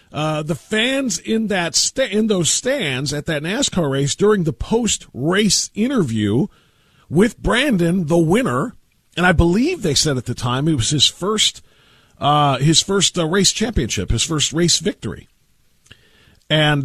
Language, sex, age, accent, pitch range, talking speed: English, male, 40-59, American, 135-185 Hz, 160 wpm